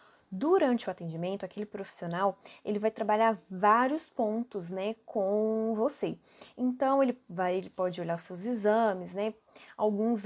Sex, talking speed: female, 140 wpm